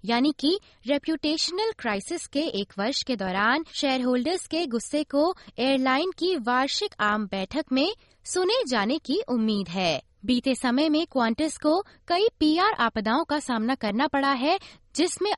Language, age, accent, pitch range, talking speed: Hindi, 20-39, native, 220-315 Hz, 150 wpm